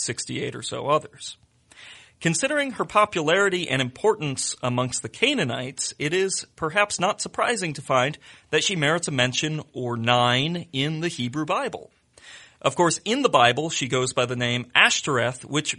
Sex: male